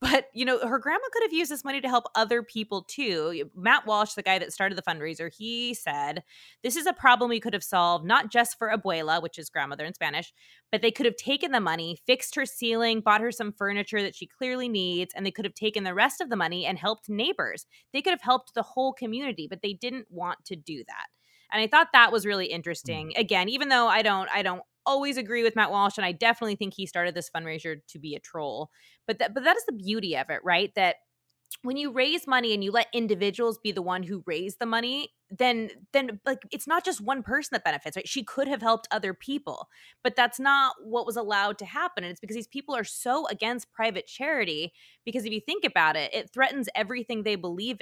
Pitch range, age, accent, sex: 190-255 Hz, 20-39, American, female